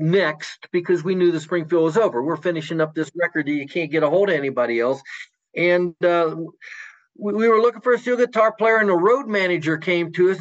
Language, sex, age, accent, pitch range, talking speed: English, male, 50-69, American, 165-210 Hz, 225 wpm